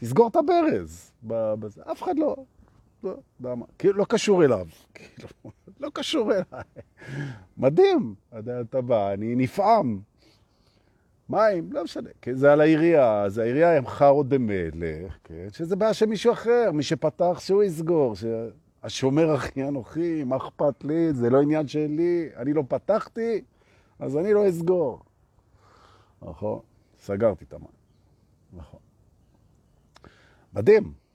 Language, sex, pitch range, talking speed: Hebrew, male, 100-165 Hz, 85 wpm